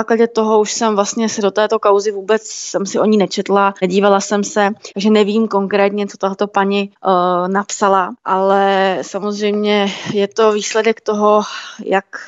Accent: native